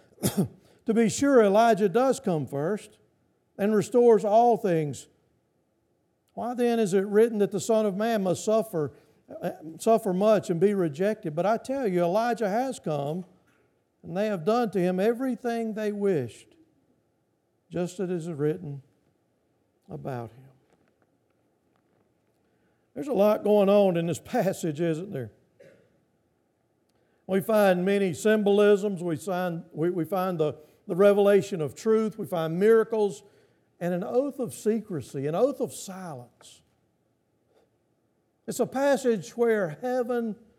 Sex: male